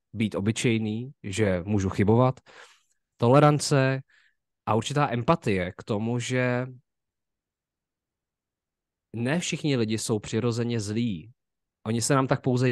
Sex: male